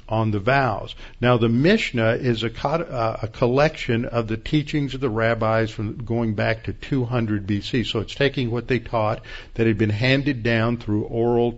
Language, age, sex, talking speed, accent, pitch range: English, 50-69, male, 185 wpm, American, 110-130 Hz